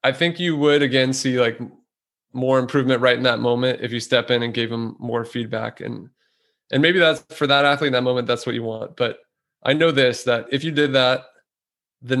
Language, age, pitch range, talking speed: English, 20-39, 120-135 Hz, 225 wpm